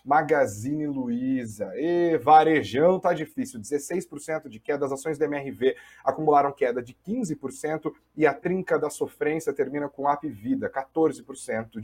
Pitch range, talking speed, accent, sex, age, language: 135-160 Hz, 140 wpm, Brazilian, male, 30-49, Portuguese